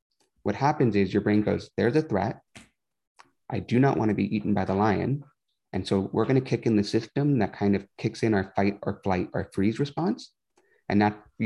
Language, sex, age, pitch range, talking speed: English, male, 30-49, 100-125 Hz, 220 wpm